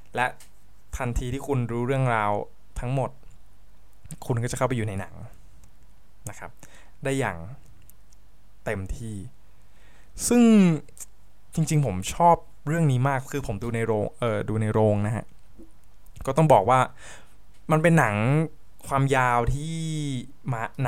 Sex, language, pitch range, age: male, Thai, 100-130 Hz, 20-39